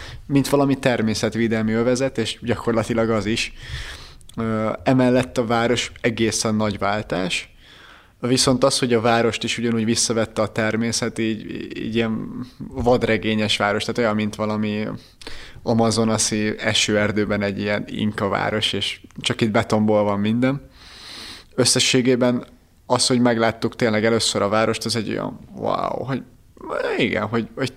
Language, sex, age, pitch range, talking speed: Hungarian, male, 20-39, 110-120 Hz, 125 wpm